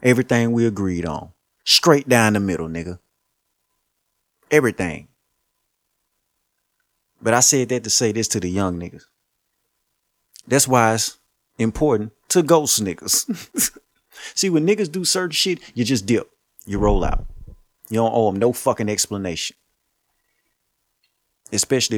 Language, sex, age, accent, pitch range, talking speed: English, male, 30-49, American, 100-140 Hz, 130 wpm